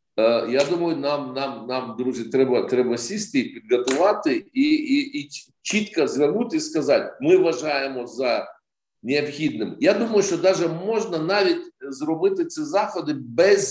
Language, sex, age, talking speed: Ukrainian, male, 50-69, 135 wpm